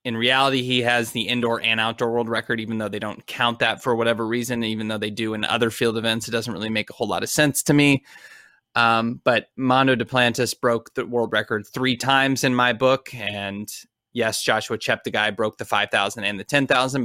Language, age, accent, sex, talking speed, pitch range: English, 20-39, American, male, 225 wpm, 110-130 Hz